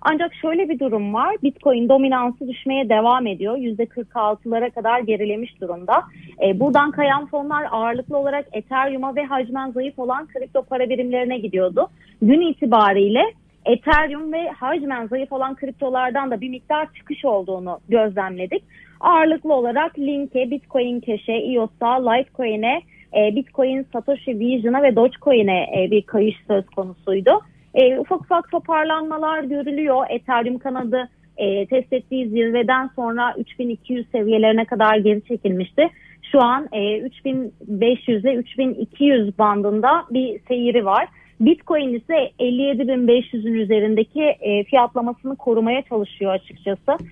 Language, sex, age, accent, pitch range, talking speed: Turkish, female, 30-49, native, 220-270 Hz, 120 wpm